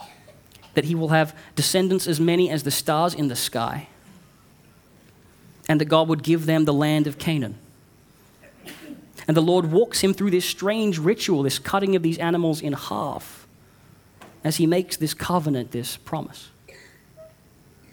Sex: male